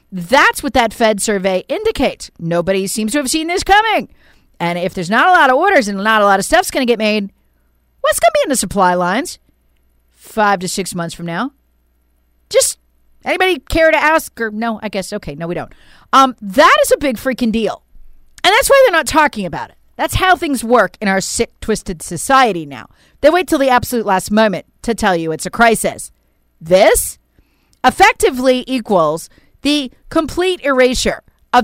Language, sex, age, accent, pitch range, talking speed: English, female, 40-59, American, 185-290 Hz, 195 wpm